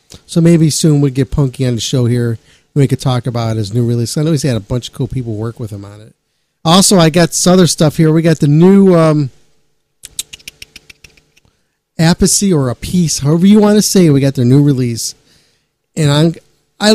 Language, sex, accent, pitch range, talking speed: English, male, American, 125-165 Hz, 215 wpm